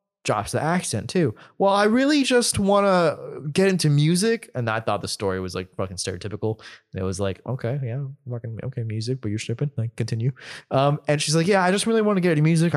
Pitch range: 115-155 Hz